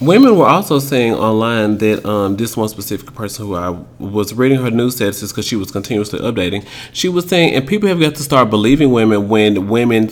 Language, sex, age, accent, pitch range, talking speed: English, male, 30-49, American, 105-135 Hz, 215 wpm